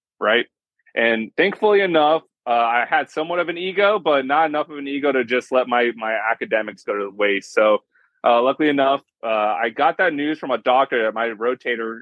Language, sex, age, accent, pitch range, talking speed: English, male, 20-39, American, 110-145 Hz, 210 wpm